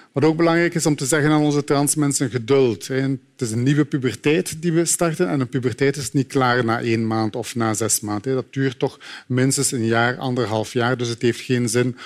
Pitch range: 115-135 Hz